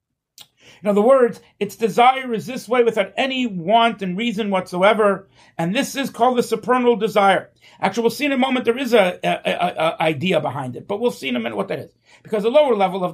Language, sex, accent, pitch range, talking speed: English, male, American, 185-245 Hz, 230 wpm